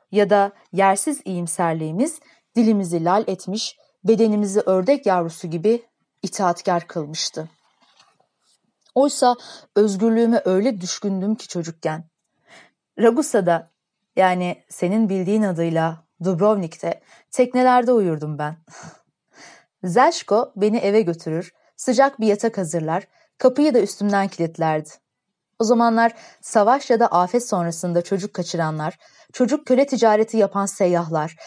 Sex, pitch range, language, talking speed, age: female, 170-225 Hz, Turkish, 105 wpm, 30-49